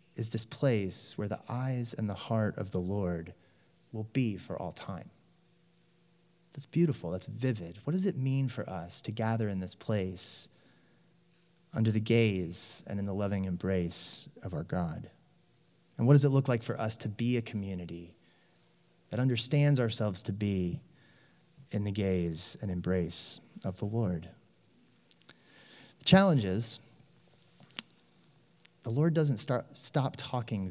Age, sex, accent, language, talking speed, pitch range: 30-49, male, American, English, 150 wpm, 100-145 Hz